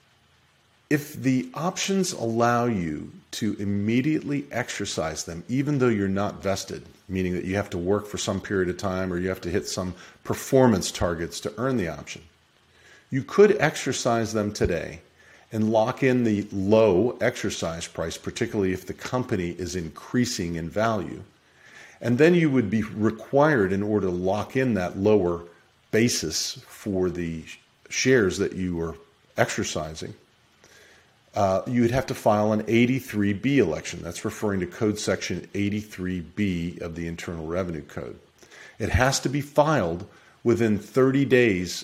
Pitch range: 90-120 Hz